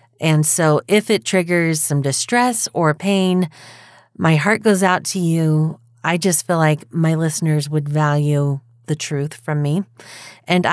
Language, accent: English, American